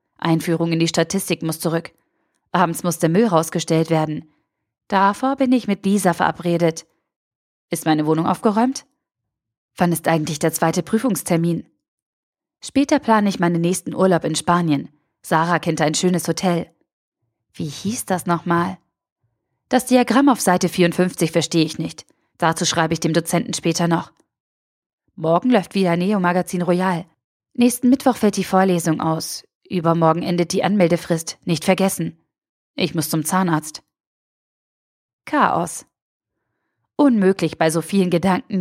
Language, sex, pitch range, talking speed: German, female, 165-195 Hz, 135 wpm